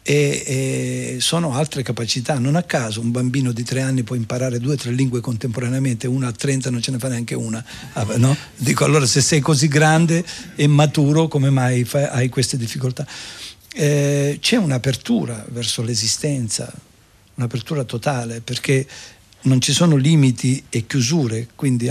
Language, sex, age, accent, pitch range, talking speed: Italian, male, 50-69, native, 120-145 Hz, 155 wpm